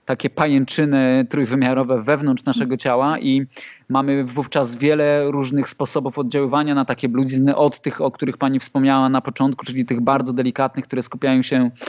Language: Polish